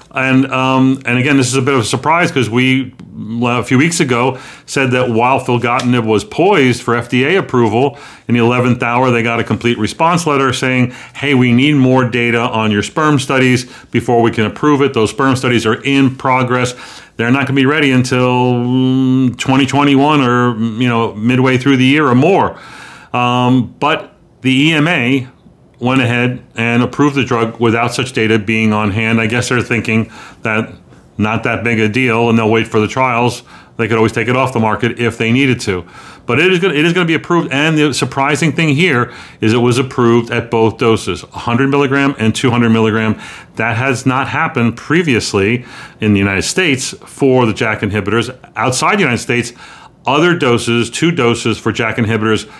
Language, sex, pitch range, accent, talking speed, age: English, male, 115-135 Hz, American, 195 wpm, 40-59